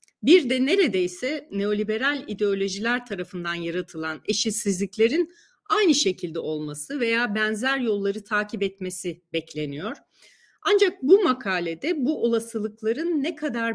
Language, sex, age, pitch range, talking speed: Turkish, female, 40-59, 180-250 Hz, 105 wpm